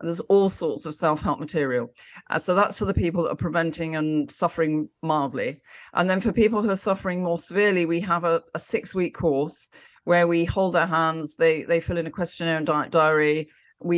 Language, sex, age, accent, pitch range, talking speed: English, female, 40-59, British, 150-175 Hz, 200 wpm